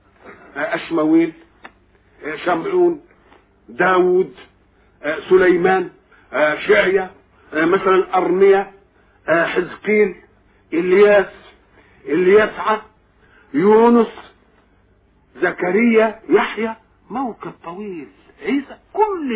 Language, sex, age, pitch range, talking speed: German, male, 50-69, 200-320 Hz, 55 wpm